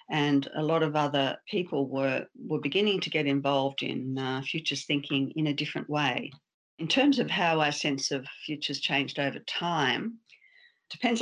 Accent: Australian